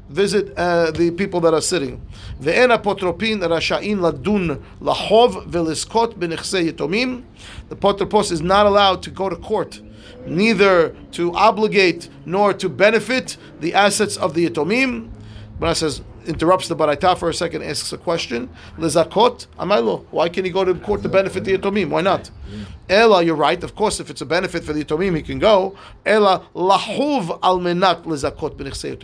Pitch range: 165-210 Hz